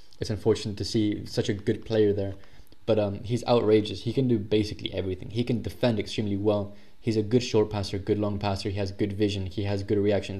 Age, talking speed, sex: 20-39, 225 wpm, male